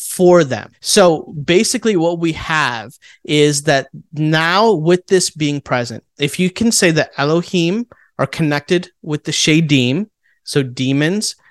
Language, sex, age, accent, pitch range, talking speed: English, male, 30-49, American, 140-175 Hz, 140 wpm